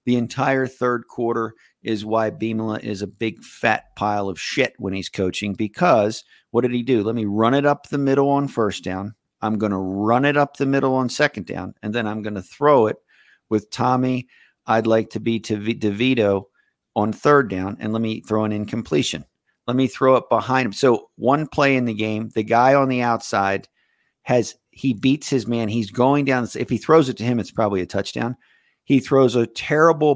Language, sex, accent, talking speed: English, male, American, 210 wpm